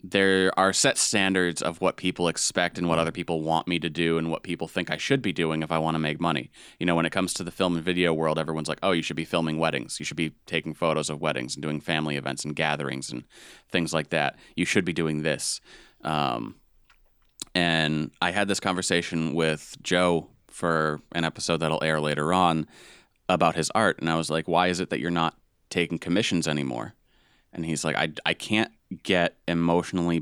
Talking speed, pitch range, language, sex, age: 220 wpm, 80-90 Hz, English, male, 30-49